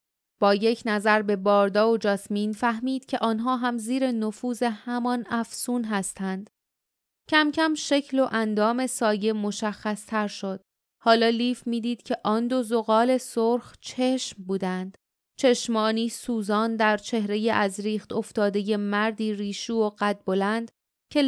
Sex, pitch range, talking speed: female, 205-245 Hz, 135 wpm